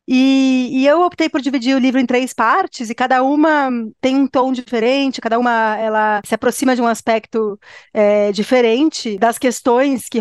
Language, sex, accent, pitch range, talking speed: Portuguese, female, Brazilian, 220-265 Hz, 180 wpm